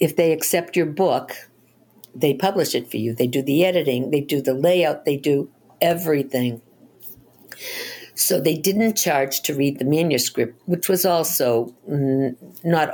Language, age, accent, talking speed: English, 60-79, American, 155 wpm